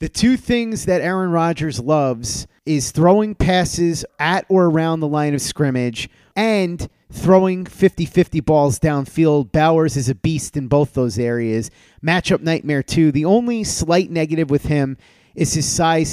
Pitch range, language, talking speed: 130-165 Hz, English, 155 wpm